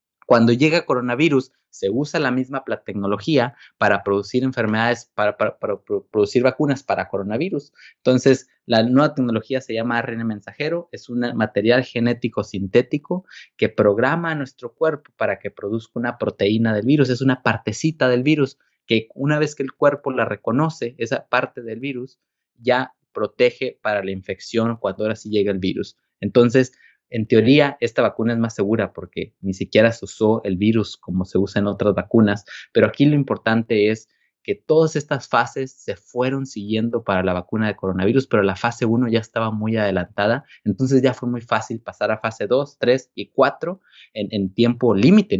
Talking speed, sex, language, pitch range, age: 175 wpm, male, Spanish, 110-135 Hz, 30-49